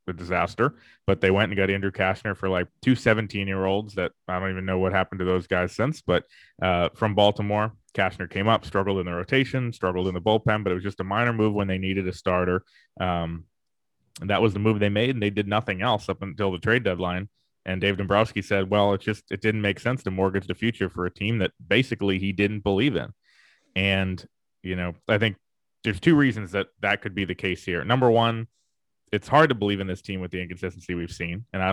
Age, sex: 20-39, male